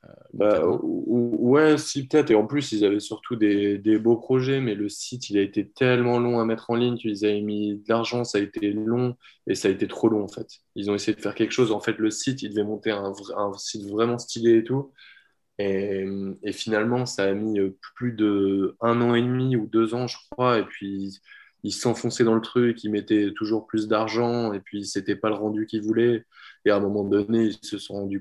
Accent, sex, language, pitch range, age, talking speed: French, male, French, 100-115 Hz, 20-39, 235 wpm